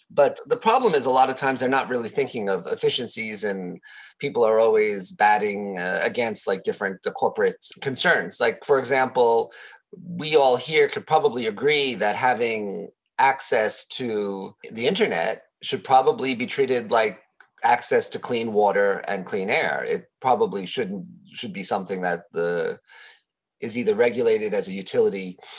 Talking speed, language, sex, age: 155 wpm, English, male, 30-49